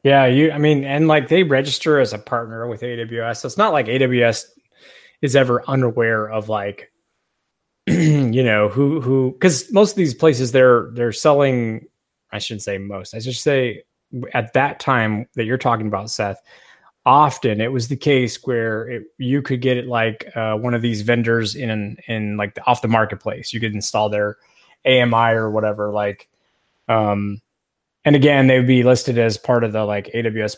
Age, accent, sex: 20-39, American, male